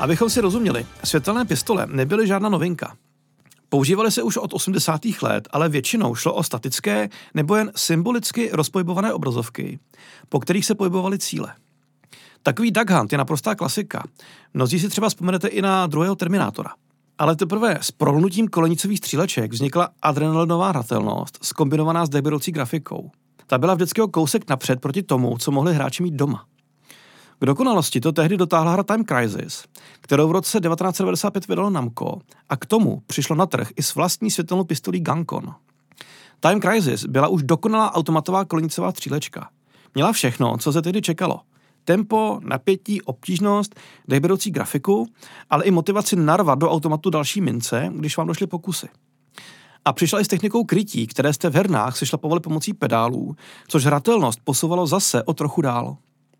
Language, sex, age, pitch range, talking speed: Czech, male, 40-59, 145-195 Hz, 155 wpm